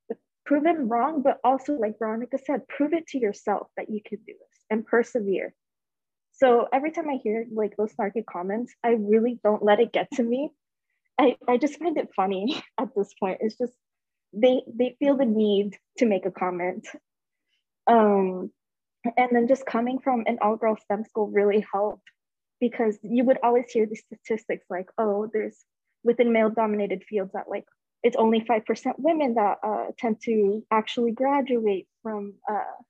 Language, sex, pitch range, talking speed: English, female, 210-250 Hz, 175 wpm